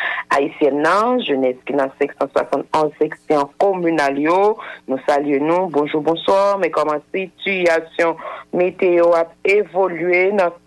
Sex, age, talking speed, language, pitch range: female, 60-79, 120 wpm, English, 160-195 Hz